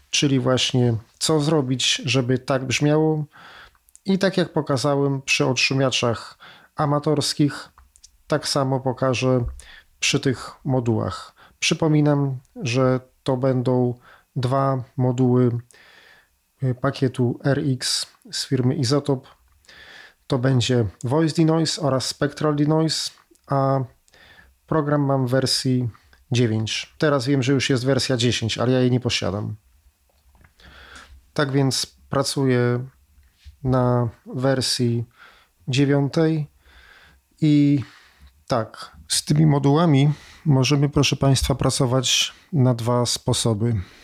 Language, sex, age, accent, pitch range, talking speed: Polish, male, 40-59, native, 120-140 Hz, 100 wpm